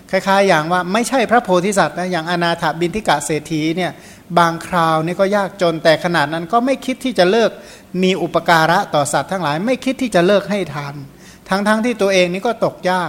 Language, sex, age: Thai, male, 60-79